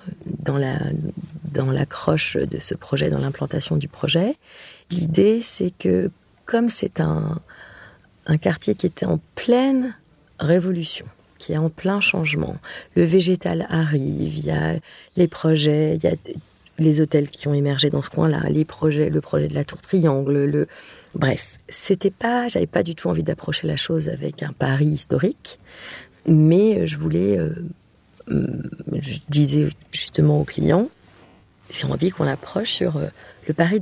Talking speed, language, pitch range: 155 wpm, French, 150-175 Hz